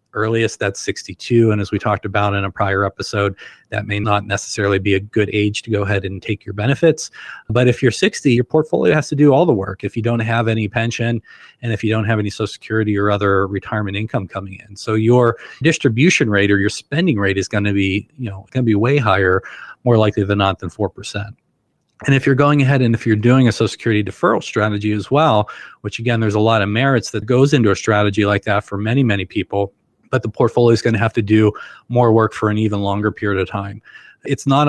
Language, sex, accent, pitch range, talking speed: English, male, American, 105-115 Hz, 240 wpm